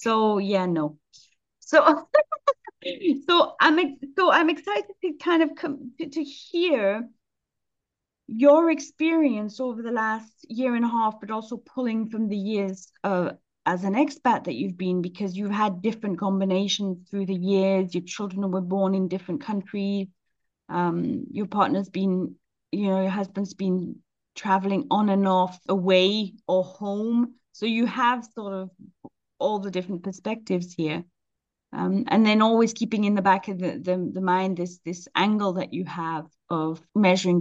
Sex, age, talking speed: female, 30-49, 160 wpm